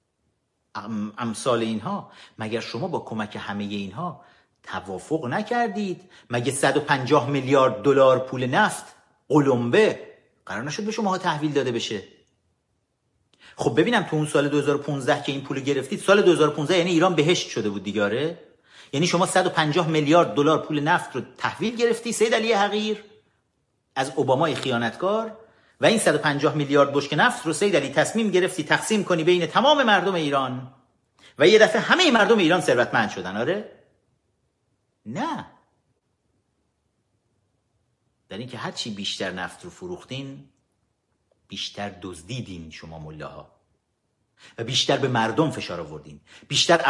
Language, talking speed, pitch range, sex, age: Persian, 135 wpm, 115-170 Hz, male, 50-69